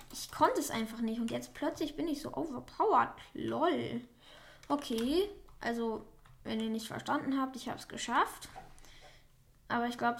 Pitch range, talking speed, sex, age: 230-275 Hz, 160 wpm, female, 10-29